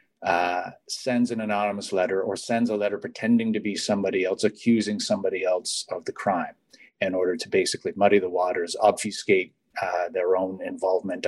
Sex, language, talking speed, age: male, English, 170 wpm, 40-59